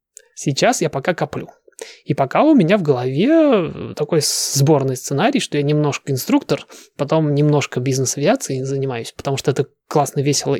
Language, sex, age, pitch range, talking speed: Russian, male, 20-39, 140-185 Hz, 145 wpm